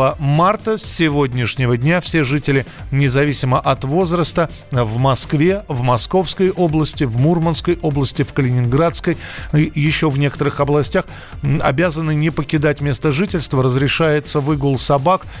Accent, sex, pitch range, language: native, male, 135-165 Hz, Russian